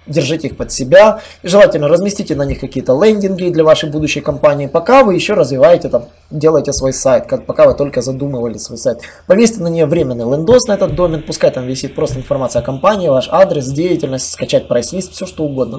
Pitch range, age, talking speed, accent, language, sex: 140-190 Hz, 20-39, 200 wpm, native, Russian, male